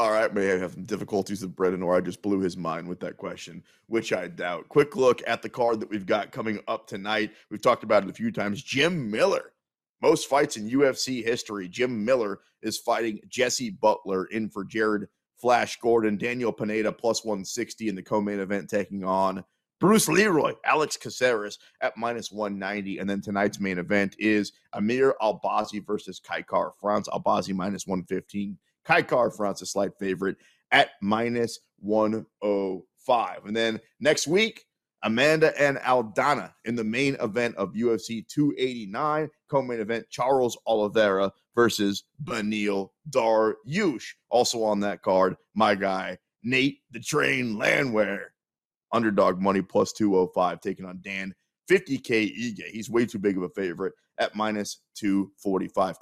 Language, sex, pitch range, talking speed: English, male, 100-115 Hz, 155 wpm